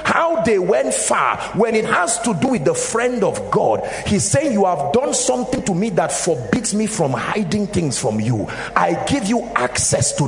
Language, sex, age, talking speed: English, male, 50-69, 205 wpm